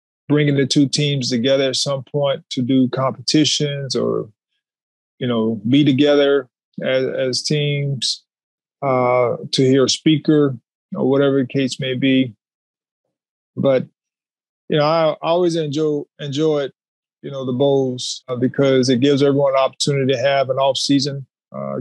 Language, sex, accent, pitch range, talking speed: English, male, American, 130-150 Hz, 145 wpm